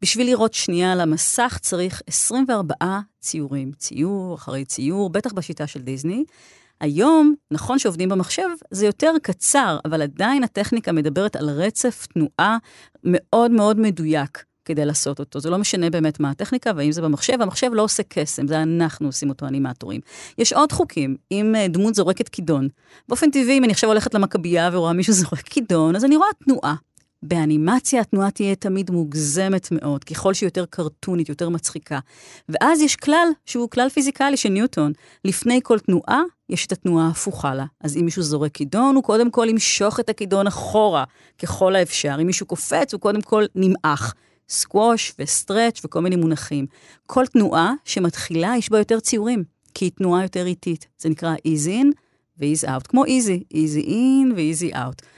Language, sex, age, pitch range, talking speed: Hebrew, female, 40-59, 155-230 Hz, 165 wpm